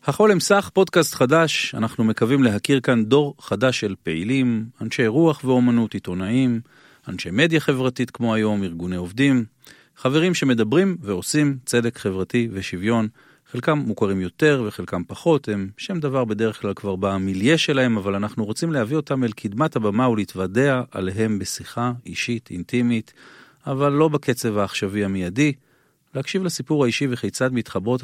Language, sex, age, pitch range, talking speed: Hebrew, male, 40-59, 100-135 Hz, 140 wpm